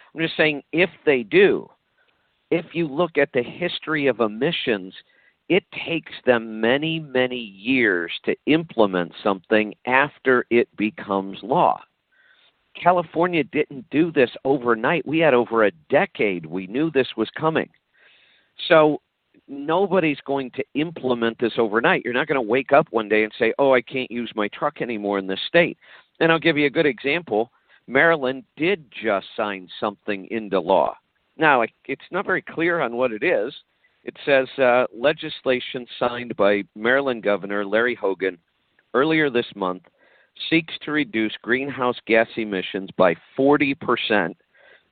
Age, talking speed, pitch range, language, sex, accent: 50-69, 150 wpm, 110-155 Hz, English, male, American